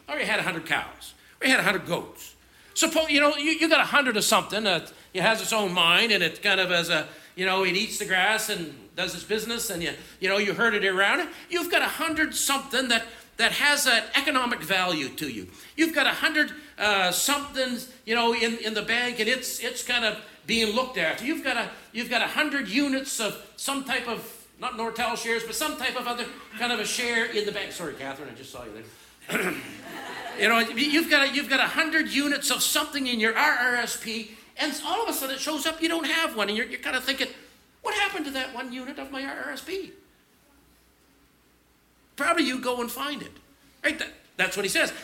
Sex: male